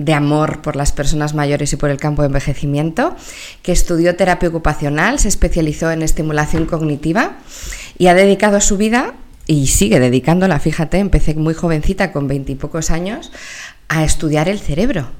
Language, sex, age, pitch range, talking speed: Spanish, female, 20-39, 145-200 Hz, 160 wpm